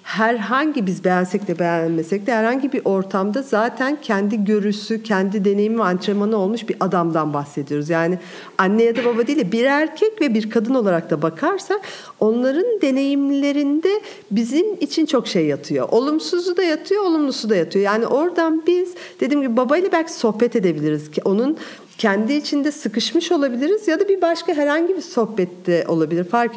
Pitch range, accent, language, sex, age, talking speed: 190-280 Hz, native, Turkish, female, 50-69, 160 wpm